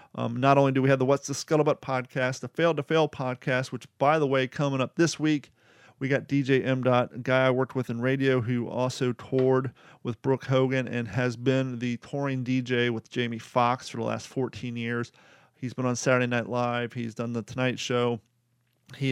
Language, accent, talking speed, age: English, American, 205 wpm, 30-49